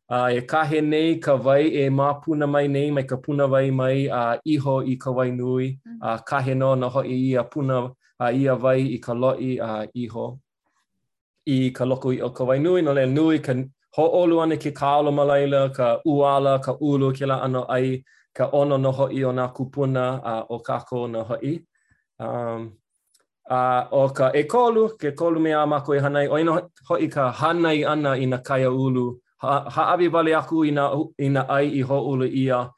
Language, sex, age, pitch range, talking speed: English, male, 20-39, 125-145 Hz, 185 wpm